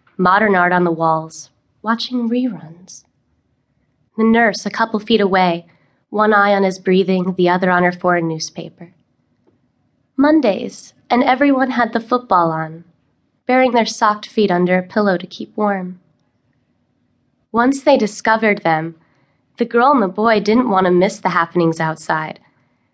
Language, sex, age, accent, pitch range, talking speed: English, female, 20-39, American, 160-210 Hz, 150 wpm